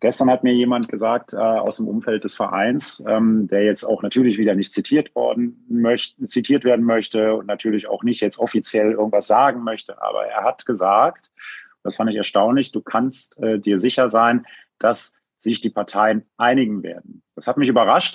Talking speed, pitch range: 180 wpm, 105-125 Hz